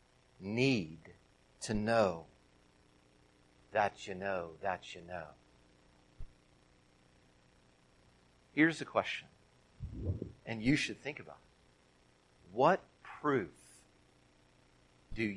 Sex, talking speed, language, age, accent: male, 80 wpm, English, 50-69, American